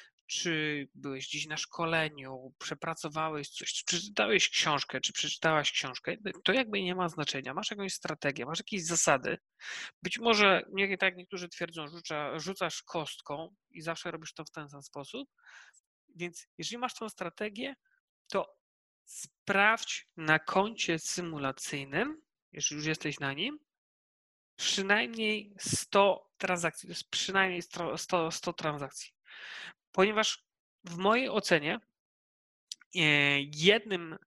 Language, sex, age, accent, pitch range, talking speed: Polish, male, 40-59, native, 155-195 Hz, 125 wpm